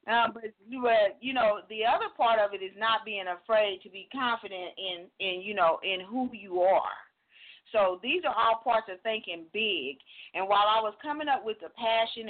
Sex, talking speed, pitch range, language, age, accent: female, 200 wpm, 180-250 Hz, English, 40-59, American